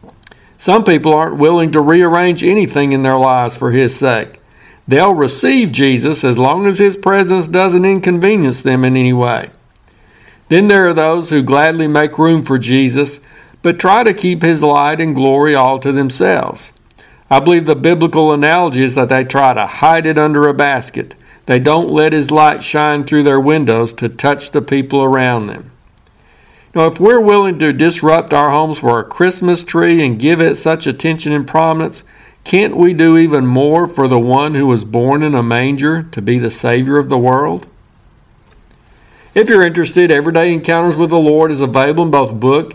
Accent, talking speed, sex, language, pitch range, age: American, 185 wpm, male, English, 130-165 Hz, 60-79